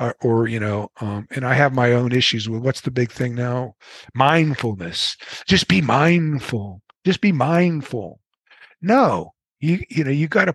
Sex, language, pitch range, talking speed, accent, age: male, English, 115-150 Hz, 175 wpm, American, 50-69